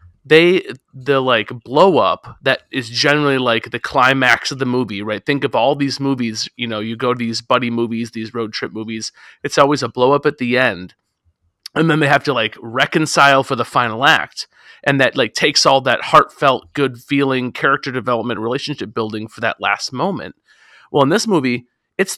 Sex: male